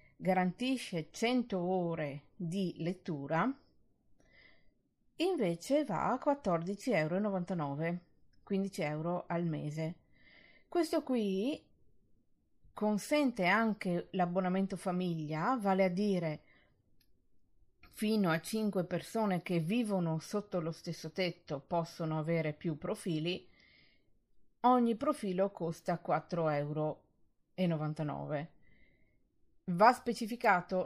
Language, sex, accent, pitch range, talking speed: Italian, female, native, 160-200 Hz, 85 wpm